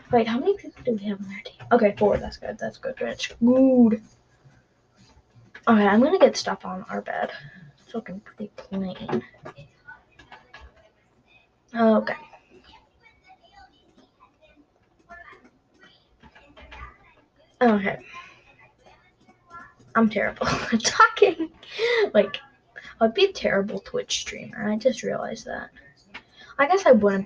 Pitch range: 210-345 Hz